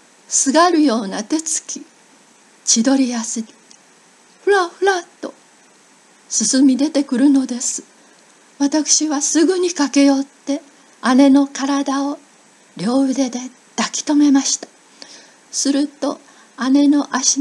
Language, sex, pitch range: Japanese, female, 255-315 Hz